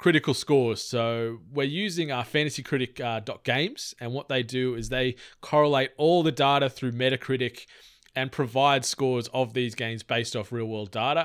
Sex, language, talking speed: male, English, 180 wpm